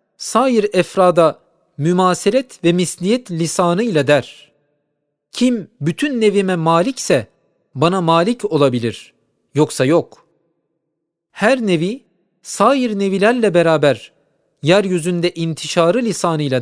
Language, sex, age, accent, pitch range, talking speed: Turkish, male, 40-59, native, 150-200 Hz, 85 wpm